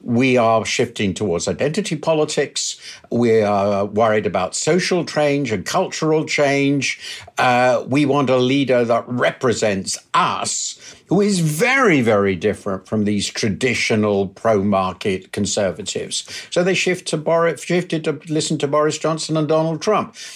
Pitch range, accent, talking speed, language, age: 110-155 Hz, British, 140 wpm, German, 60-79